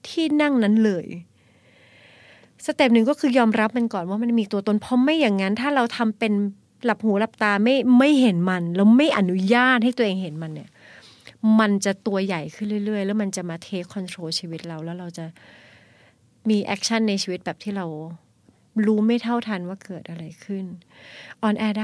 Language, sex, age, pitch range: Thai, female, 30-49, 180-230 Hz